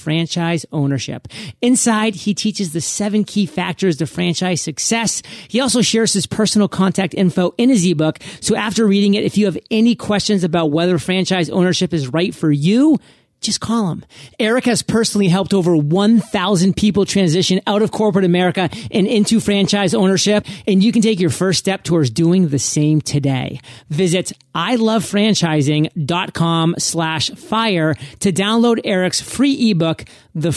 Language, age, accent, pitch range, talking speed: English, 30-49, American, 165-210 Hz, 155 wpm